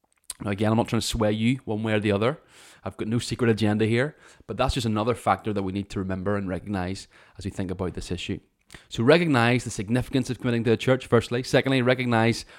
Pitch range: 100-120 Hz